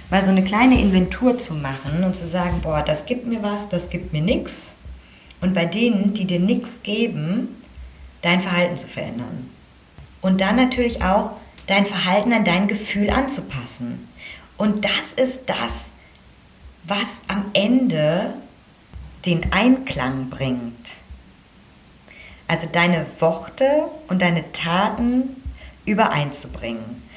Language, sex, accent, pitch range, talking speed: German, female, German, 150-225 Hz, 125 wpm